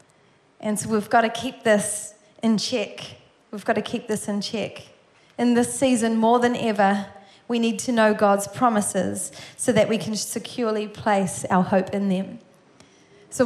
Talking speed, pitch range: 165 wpm, 205-260 Hz